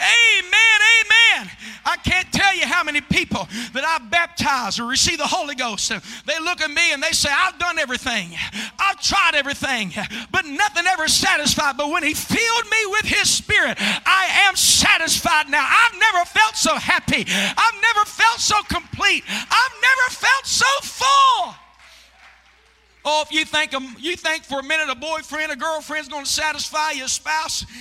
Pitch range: 285-340 Hz